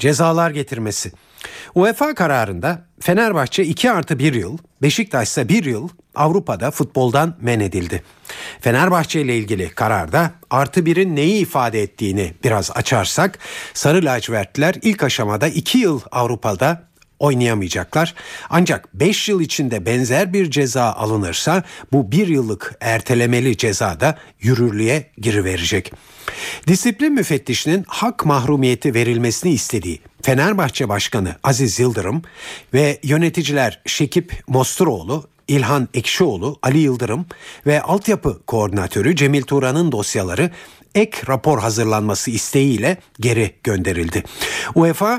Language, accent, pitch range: Turkish, native, 115-160 Hz